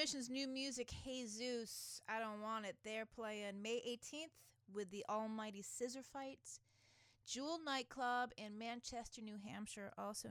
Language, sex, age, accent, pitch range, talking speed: English, female, 30-49, American, 160-230 Hz, 135 wpm